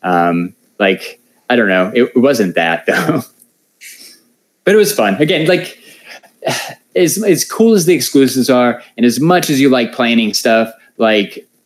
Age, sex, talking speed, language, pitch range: 20-39, male, 160 wpm, English, 105-135 Hz